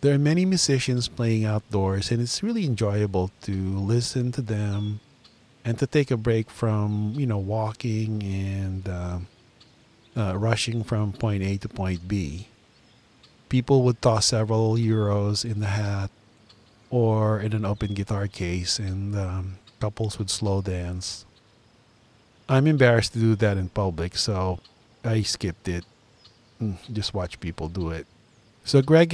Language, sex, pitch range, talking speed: English, male, 100-120 Hz, 145 wpm